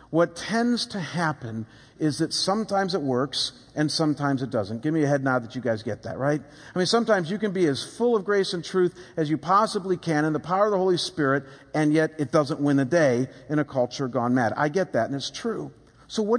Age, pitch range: 50-69, 135-180 Hz